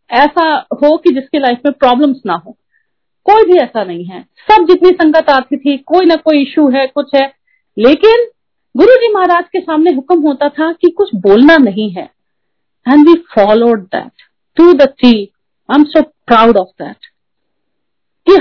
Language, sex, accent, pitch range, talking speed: Hindi, female, native, 235-340 Hz, 130 wpm